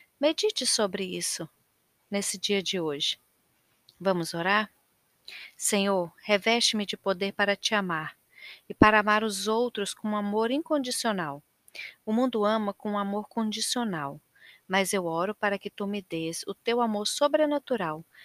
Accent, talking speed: Brazilian, 140 wpm